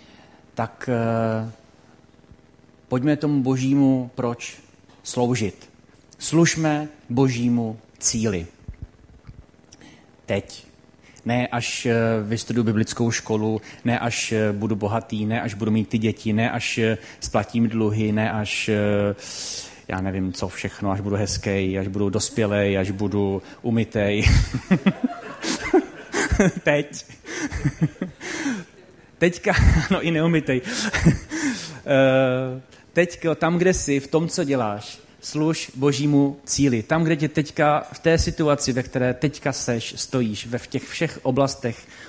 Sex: male